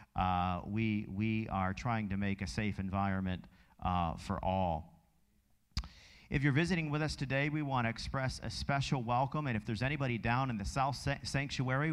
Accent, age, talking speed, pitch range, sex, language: American, 50-69, 180 wpm, 105-135 Hz, male, English